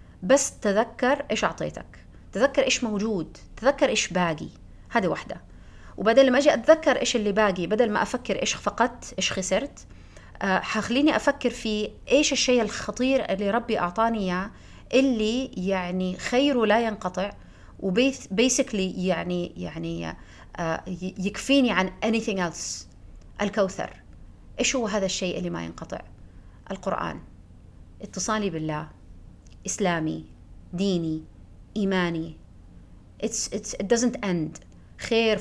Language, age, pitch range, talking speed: Arabic, 30-49, 165-225 Hz, 115 wpm